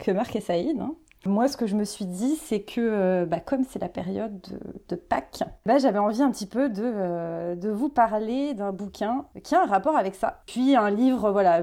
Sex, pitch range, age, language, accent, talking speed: female, 200-265 Hz, 30-49, French, French, 235 wpm